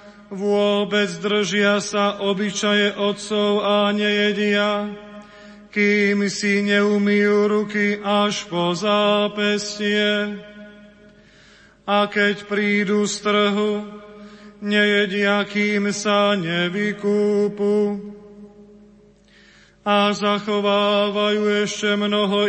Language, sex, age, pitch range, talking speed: Slovak, male, 30-49, 205-210 Hz, 70 wpm